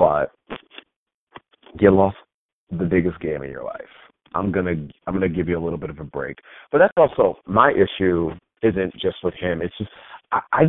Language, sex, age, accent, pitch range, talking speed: English, male, 40-59, American, 90-115 Hz, 190 wpm